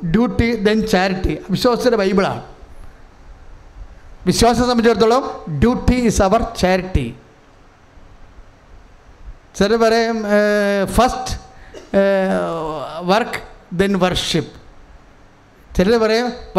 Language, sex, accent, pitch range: English, male, Indian, 180-225 Hz